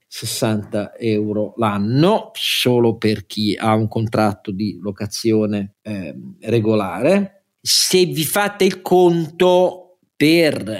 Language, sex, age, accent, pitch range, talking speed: Italian, male, 50-69, native, 105-150 Hz, 105 wpm